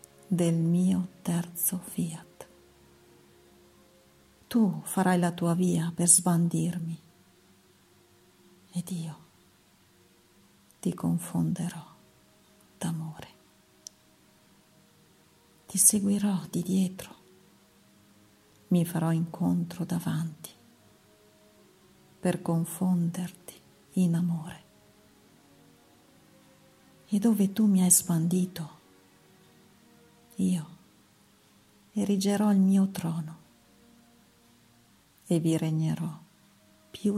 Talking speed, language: 70 wpm, Italian